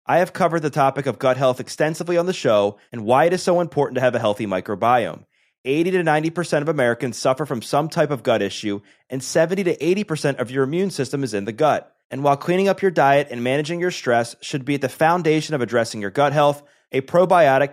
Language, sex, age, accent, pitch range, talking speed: English, male, 30-49, American, 130-165 Hz, 235 wpm